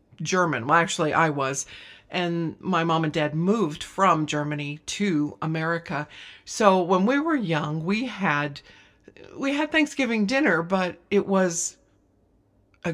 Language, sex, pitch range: English, female, 150-195 Hz